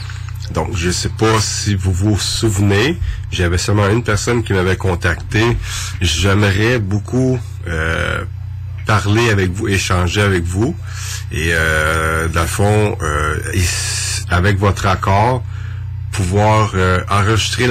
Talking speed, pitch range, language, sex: 120 wpm, 90-105 Hz, French, male